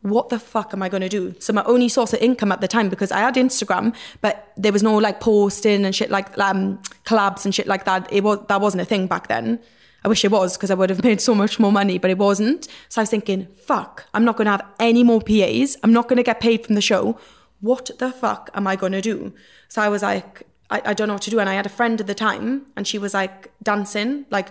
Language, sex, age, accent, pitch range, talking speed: English, female, 20-39, British, 195-230 Hz, 270 wpm